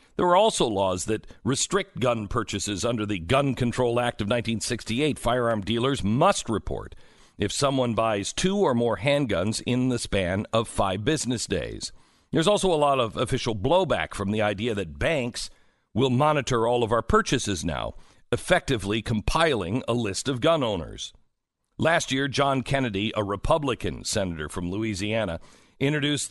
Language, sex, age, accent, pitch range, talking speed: English, male, 50-69, American, 105-140 Hz, 155 wpm